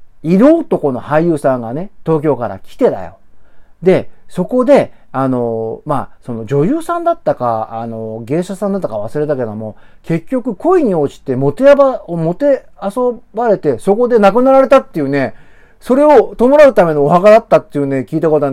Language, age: Japanese, 40-59